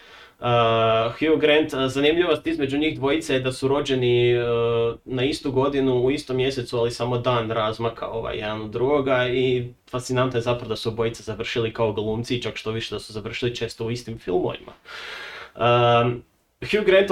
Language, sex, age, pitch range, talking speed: Croatian, male, 20-39, 115-130 Hz, 170 wpm